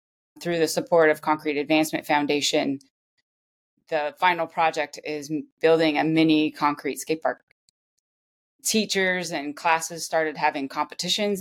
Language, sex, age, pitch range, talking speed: English, female, 20-39, 150-165 Hz, 125 wpm